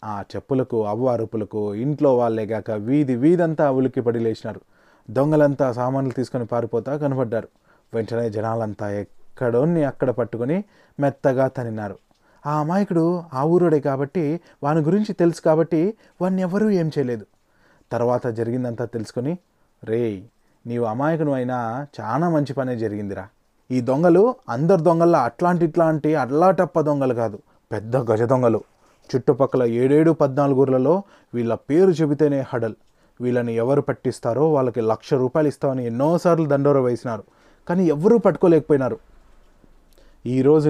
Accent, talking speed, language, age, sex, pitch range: native, 115 wpm, Telugu, 20-39, male, 120-160 Hz